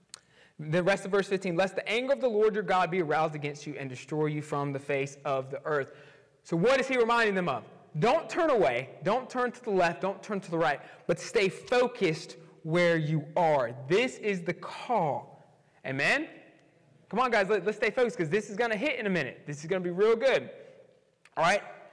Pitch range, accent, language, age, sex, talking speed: 170-250 Hz, American, English, 20-39, male, 220 wpm